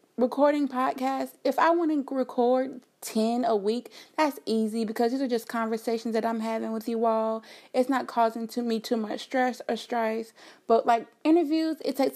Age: 30-49